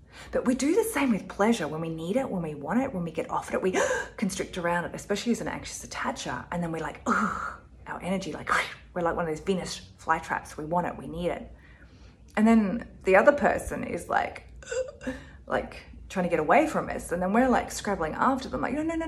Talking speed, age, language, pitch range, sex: 235 wpm, 30-49, English, 155-235 Hz, female